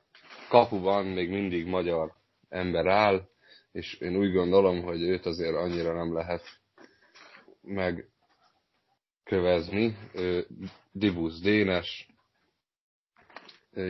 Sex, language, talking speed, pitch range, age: male, Hungarian, 95 wpm, 85-95 Hz, 30-49